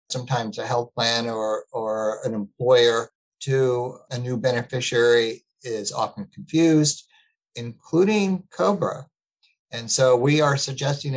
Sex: male